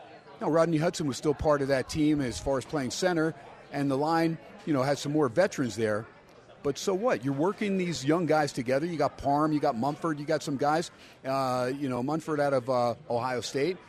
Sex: male